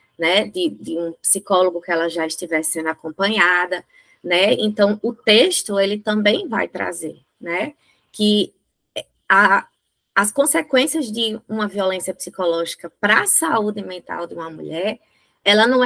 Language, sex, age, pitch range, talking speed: Portuguese, female, 20-39, 180-215 Hz, 130 wpm